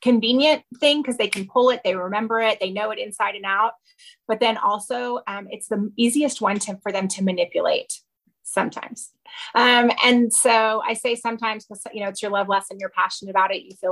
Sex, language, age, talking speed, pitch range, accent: female, English, 30-49, 210 wpm, 195-235 Hz, American